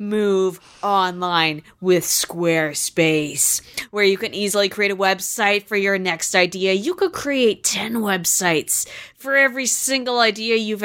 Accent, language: American, English